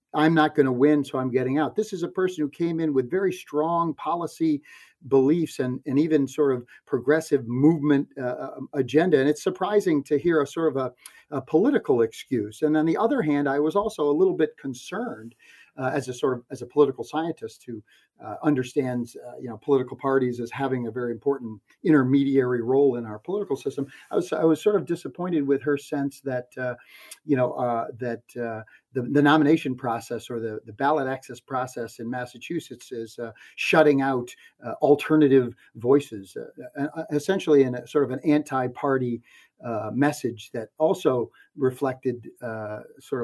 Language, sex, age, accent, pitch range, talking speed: English, male, 50-69, American, 125-155 Hz, 185 wpm